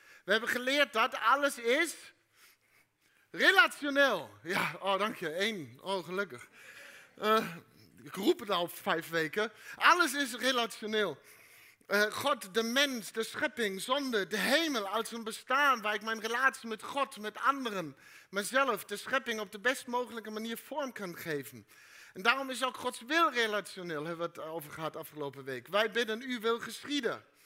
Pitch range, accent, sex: 195-265 Hz, Dutch, male